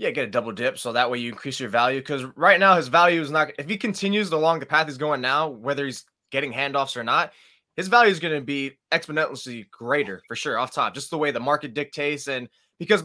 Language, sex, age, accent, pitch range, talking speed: English, male, 20-39, American, 140-180 Hz, 245 wpm